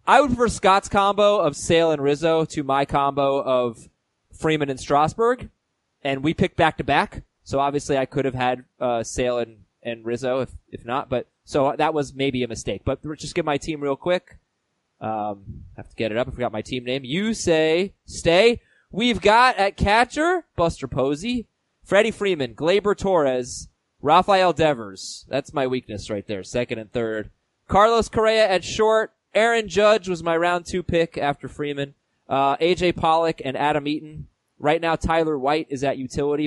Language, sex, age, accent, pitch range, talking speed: English, male, 20-39, American, 130-185 Hz, 185 wpm